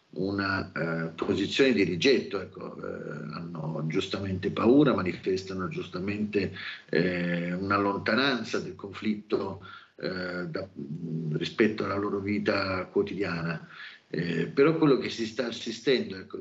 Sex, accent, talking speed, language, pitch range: male, native, 115 wpm, Italian, 90-115 Hz